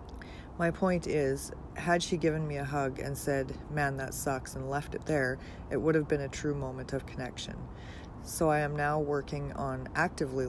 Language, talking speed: English, 195 wpm